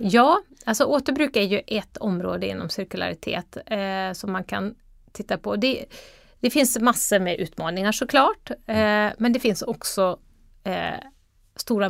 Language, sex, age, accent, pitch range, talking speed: Swedish, female, 30-49, native, 190-245 Hz, 130 wpm